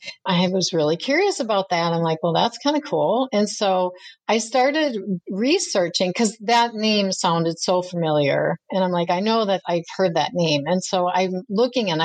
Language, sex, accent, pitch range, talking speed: English, female, American, 180-230 Hz, 195 wpm